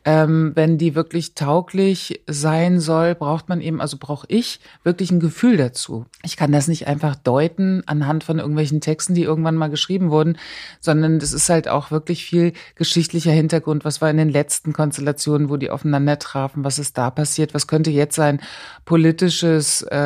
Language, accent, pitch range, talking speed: German, German, 145-165 Hz, 180 wpm